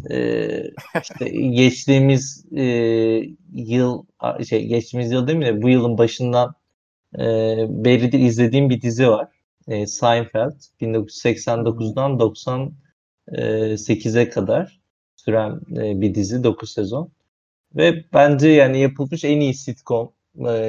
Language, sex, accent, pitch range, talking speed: Turkish, male, native, 115-140 Hz, 115 wpm